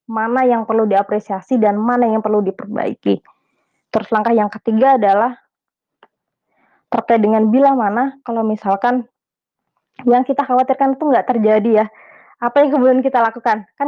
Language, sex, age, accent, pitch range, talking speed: Indonesian, female, 20-39, native, 220-255 Hz, 145 wpm